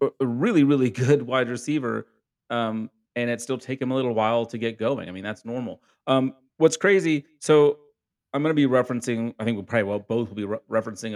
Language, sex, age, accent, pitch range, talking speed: English, male, 30-49, American, 105-130 Hz, 225 wpm